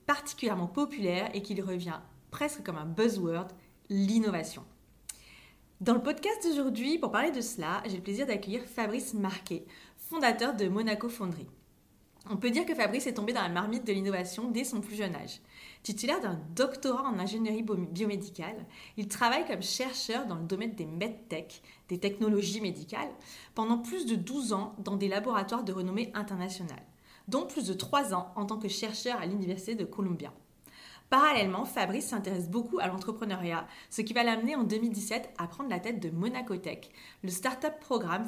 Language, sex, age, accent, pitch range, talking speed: French, female, 30-49, French, 185-240 Hz, 170 wpm